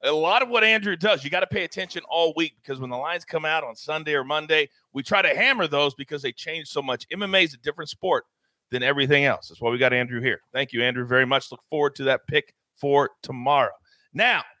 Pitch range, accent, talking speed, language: 135-190 Hz, American, 245 wpm, English